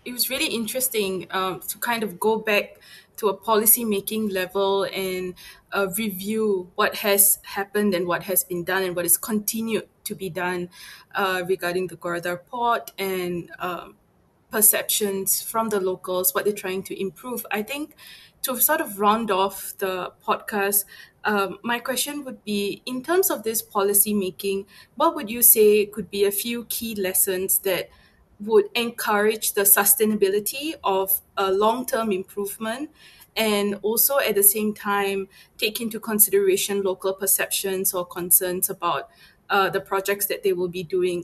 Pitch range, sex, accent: 185-215 Hz, female, Malaysian